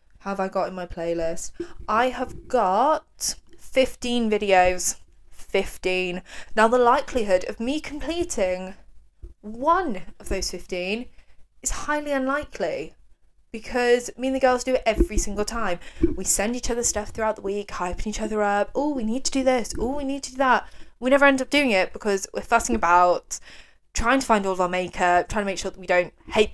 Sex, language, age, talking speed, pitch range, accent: female, English, 20-39, 190 wpm, 185-250 Hz, British